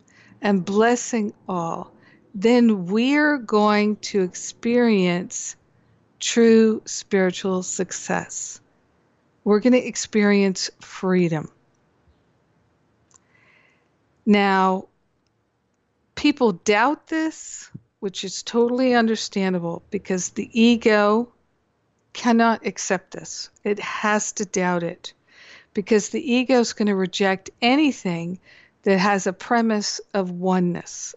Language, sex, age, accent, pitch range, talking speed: English, female, 50-69, American, 190-230 Hz, 90 wpm